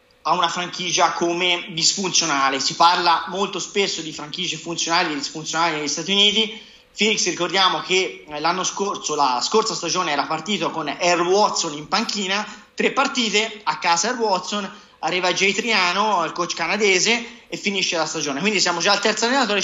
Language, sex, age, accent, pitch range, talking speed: Italian, male, 30-49, native, 170-210 Hz, 165 wpm